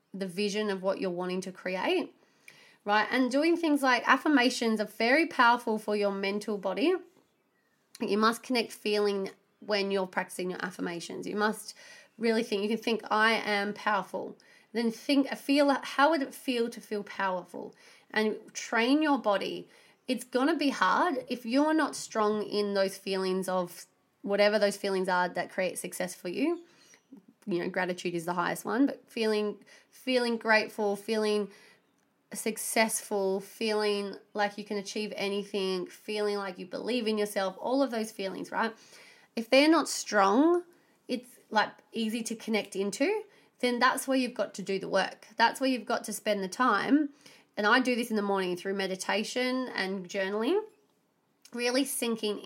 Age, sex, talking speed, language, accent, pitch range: 30-49, female, 165 wpm, English, Australian, 200-255 Hz